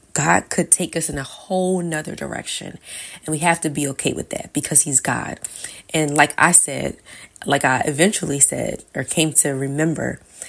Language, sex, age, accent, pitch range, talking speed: English, female, 20-39, American, 140-165 Hz, 185 wpm